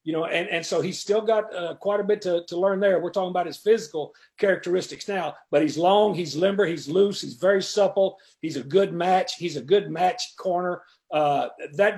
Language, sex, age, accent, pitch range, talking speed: English, male, 50-69, American, 170-210 Hz, 220 wpm